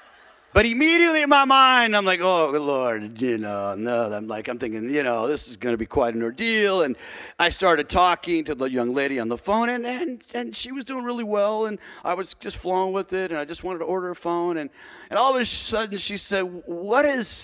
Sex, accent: male, American